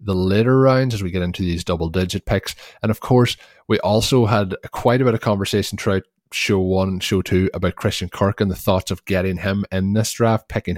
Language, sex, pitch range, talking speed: English, male, 90-110 Hz, 225 wpm